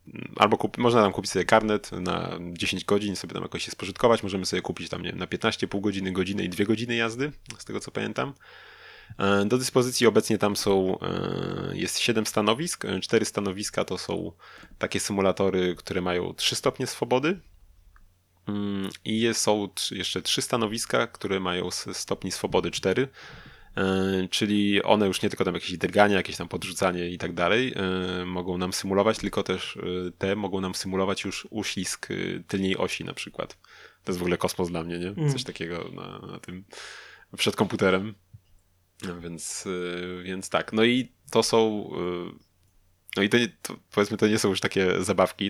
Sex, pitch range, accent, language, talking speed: male, 90-105 Hz, native, Polish, 165 wpm